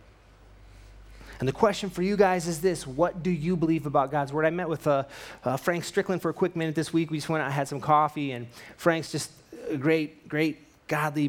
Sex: male